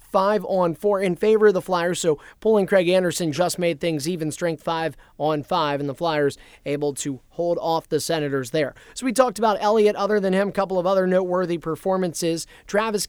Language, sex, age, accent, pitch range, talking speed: English, male, 30-49, American, 160-205 Hz, 190 wpm